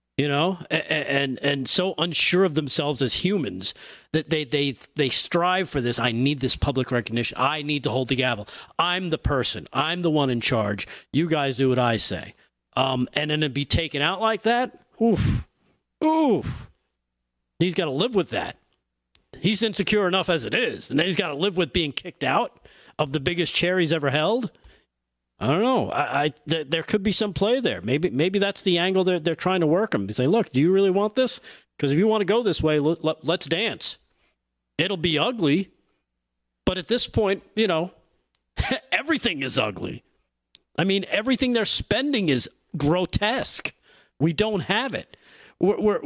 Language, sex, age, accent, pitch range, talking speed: English, male, 40-59, American, 135-200 Hz, 195 wpm